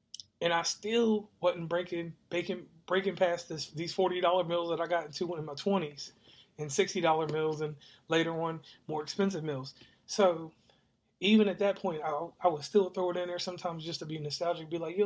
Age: 30-49